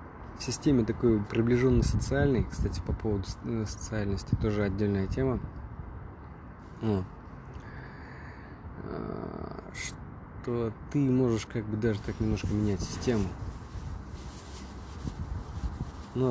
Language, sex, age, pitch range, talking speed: Russian, male, 20-39, 95-120 Hz, 85 wpm